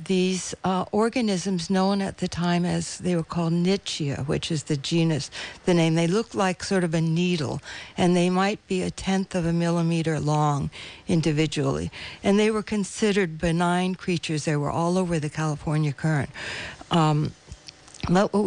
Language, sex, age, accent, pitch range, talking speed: English, female, 60-79, American, 160-185 Hz, 170 wpm